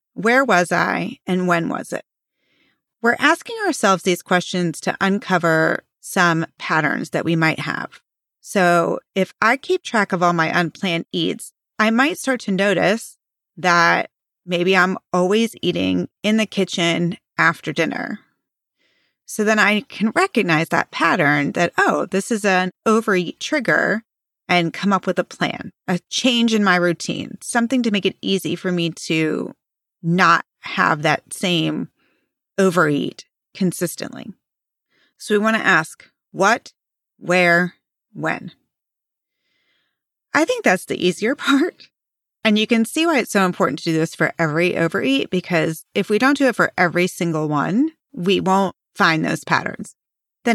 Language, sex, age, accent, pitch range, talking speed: English, female, 30-49, American, 170-220 Hz, 150 wpm